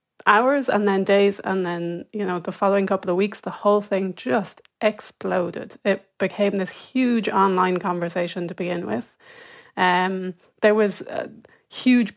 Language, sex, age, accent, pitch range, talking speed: English, female, 30-49, British, 190-215 Hz, 160 wpm